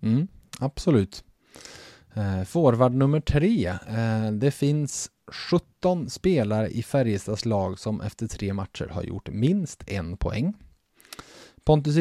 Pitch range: 100-135 Hz